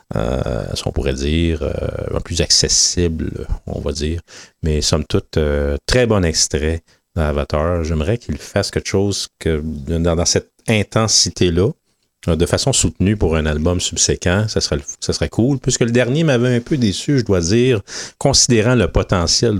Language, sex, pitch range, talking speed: English, male, 80-110 Hz, 170 wpm